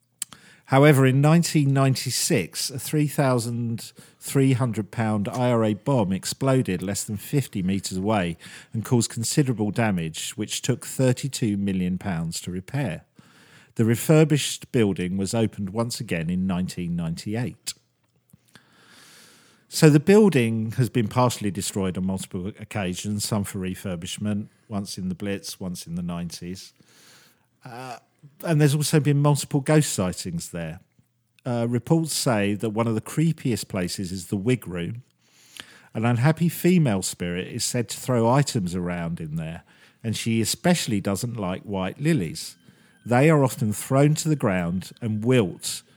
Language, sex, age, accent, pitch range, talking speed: English, male, 50-69, British, 95-140 Hz, 135 wpm